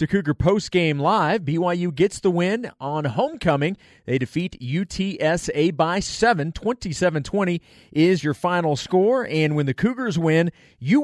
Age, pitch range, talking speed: 30-49, 140-185 Hz, 150 wpm